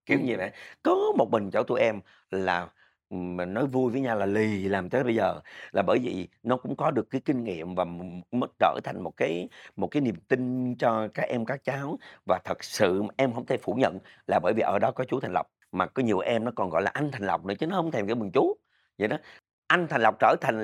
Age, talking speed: 50-69, 255 wpm